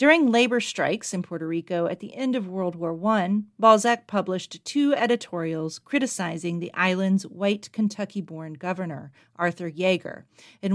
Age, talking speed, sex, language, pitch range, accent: 40-59, 145 wpm, female, English, 165-225 Hz, American